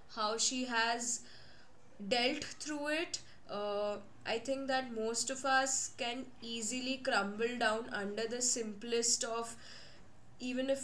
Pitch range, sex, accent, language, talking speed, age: 215-260 Hz, female, Indian, English, 125 wpm, 10-29